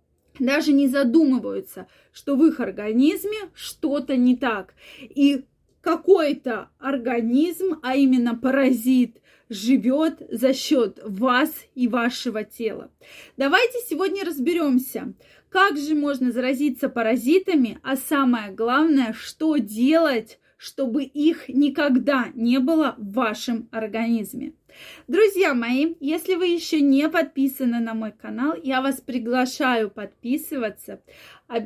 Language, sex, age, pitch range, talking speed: Russian, female, 20-39, 240-305 Hz, 110 wpm